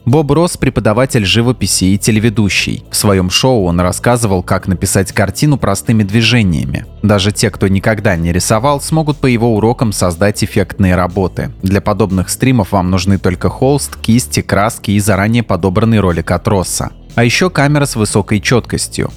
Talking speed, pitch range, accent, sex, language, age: 155 wpm, 95-120 Hz, native, male, Russian, 20-39